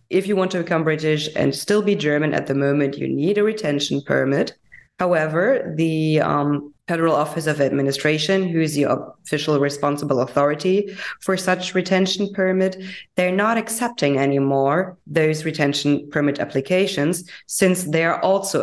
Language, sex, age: English, female, 20-39